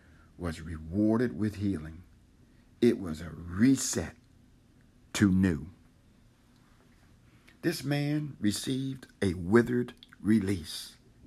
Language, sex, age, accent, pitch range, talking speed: English, male, 60-79, American, 85-120 Hz, 85 wpm